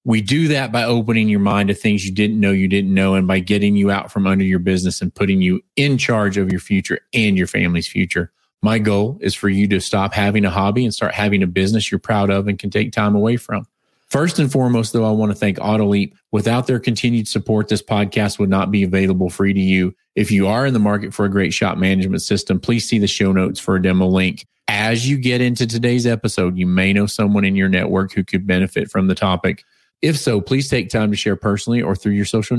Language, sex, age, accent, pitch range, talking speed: English, male, 30-49, American, 100-115 Hz, 245 wpm